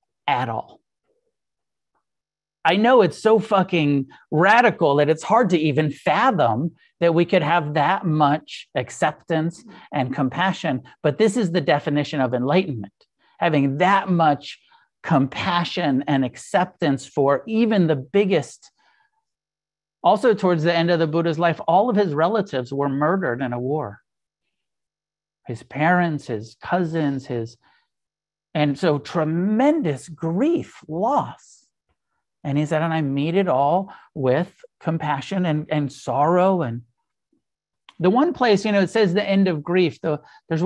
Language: English